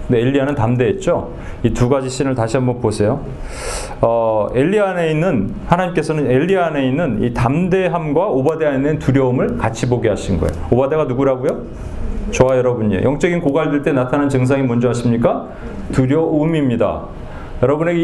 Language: Korean